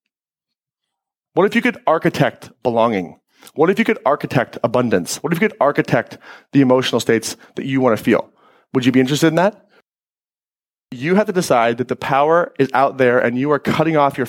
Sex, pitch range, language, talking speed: male, 130-200 Hz, English, 195 wpm